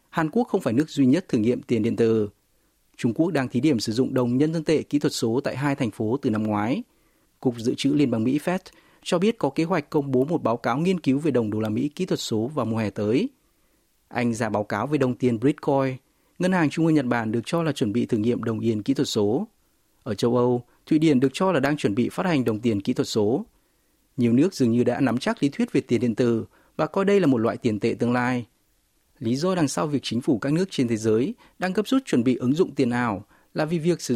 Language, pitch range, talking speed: Vietnamese, 115-155 Hz, 275 wpm